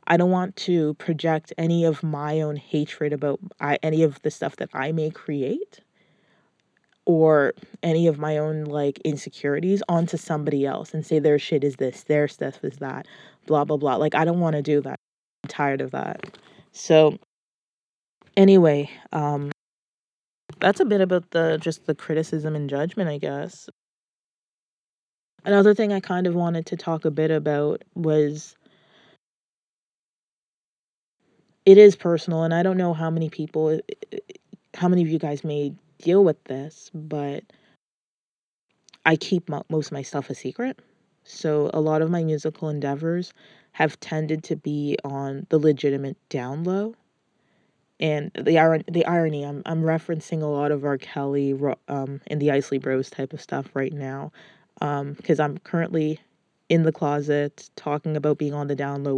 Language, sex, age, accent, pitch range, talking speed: English, female, 20-39, American, 145-170 Hz, 165 wpm